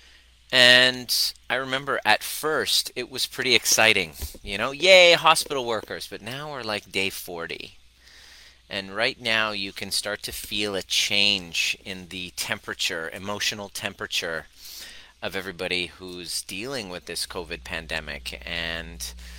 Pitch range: 90-105 Hz